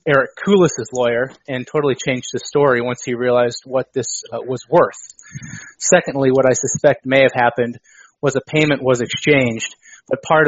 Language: English